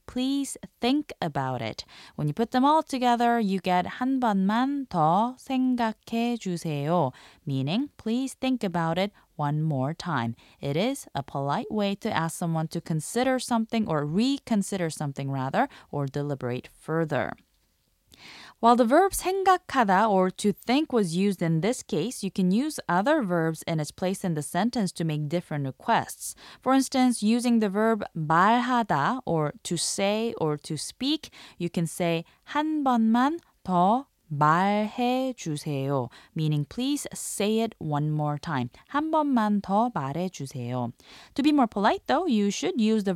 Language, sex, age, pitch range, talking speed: English, female, 20-39, 160-245 Hz, 150 wpm